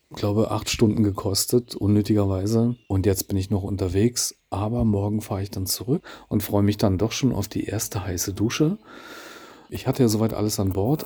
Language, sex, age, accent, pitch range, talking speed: German, male, 40-59, German, 100-120 Hz, 195 wpm